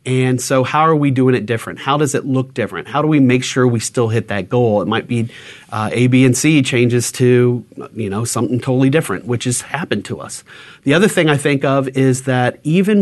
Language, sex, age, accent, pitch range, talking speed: English, male, 30-49, American, 120-145 Hz, 240 wpm